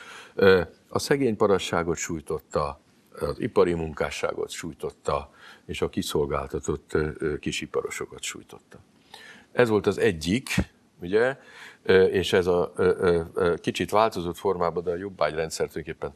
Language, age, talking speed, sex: Hungarian, 50-69, 105 wpm, male